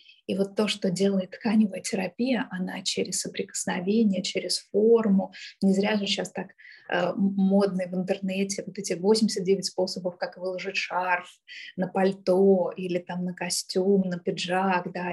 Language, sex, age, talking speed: Russian, female, 20-39, 145 wpm